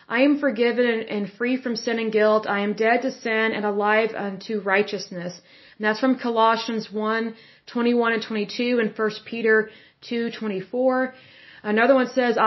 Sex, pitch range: female, 210-240 Hz